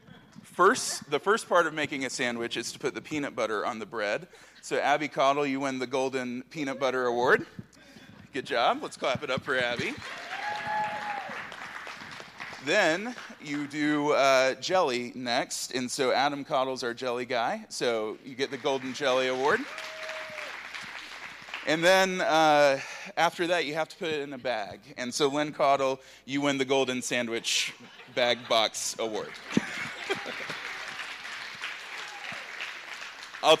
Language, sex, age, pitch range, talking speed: English, male, 30-49, 125-150 Hz, 145 wpm